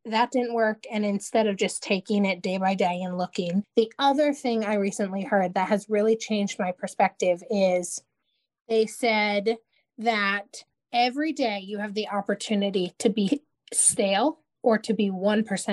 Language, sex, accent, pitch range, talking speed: English, female, American, 200-245 Hz, 160 wpm